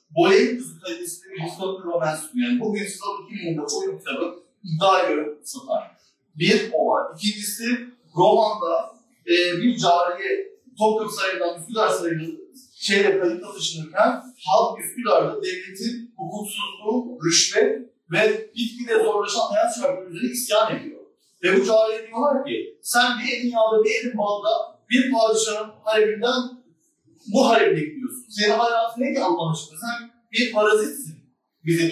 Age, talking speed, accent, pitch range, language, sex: 40-59, 135 wpm, native, 180-255 Hz, Turkish, male